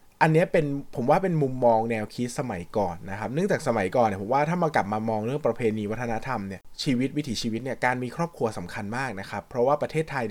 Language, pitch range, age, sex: Thai, 105-145 Hz, 20-39, male